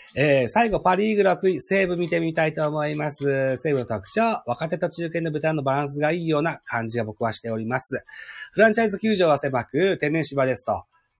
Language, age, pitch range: Japanese, 40-59, 110-185 Hz